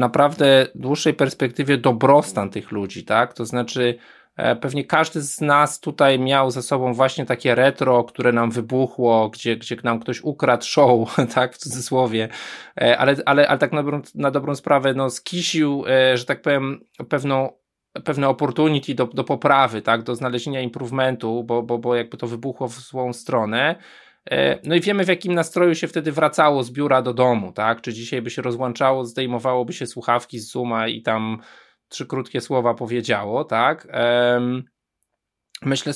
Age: 20-39